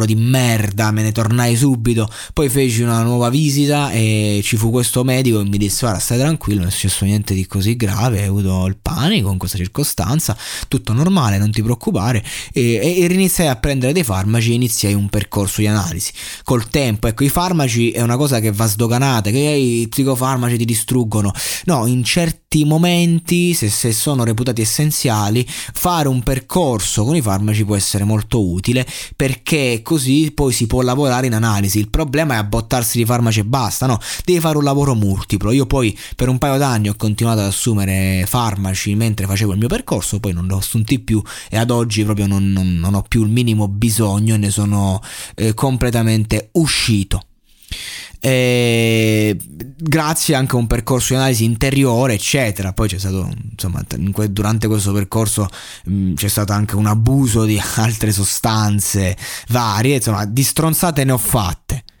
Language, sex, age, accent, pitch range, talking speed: Italian, male, 20-39, native, 105-130 Hz, 180 wpm